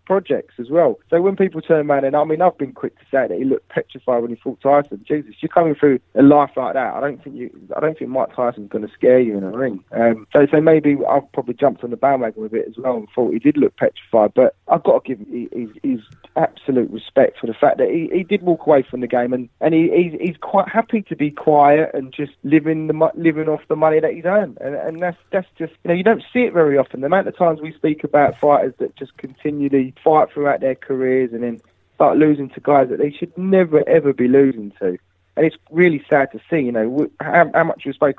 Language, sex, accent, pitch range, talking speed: English, male, British, 130-165 Hz, 260 wpm